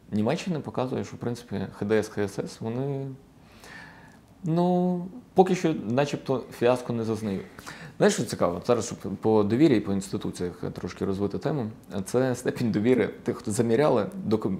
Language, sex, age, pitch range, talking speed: Ukrainian, male, 20-39, 100-115 Hz, 140 wpm